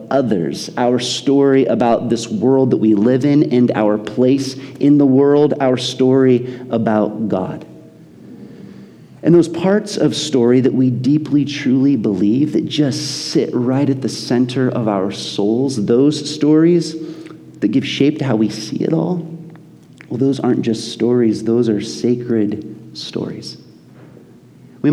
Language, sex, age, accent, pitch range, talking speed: English, male, 40-59, American, 110-145 Hz, 145 wpm